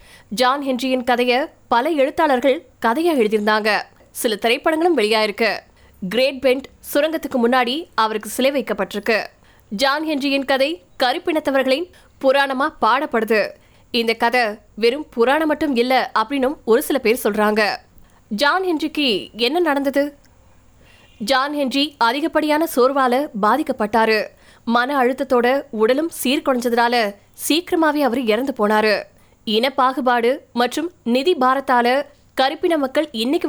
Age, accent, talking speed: 20-39, native, 65 wpm